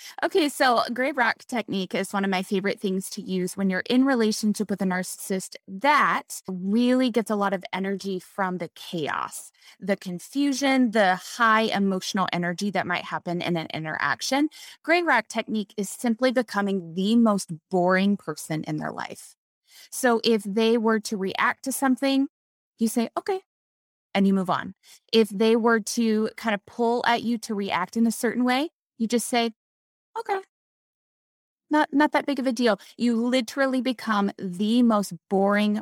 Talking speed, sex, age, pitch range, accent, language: 170 wpm, female, 20-39, 185-235 Hz, American, English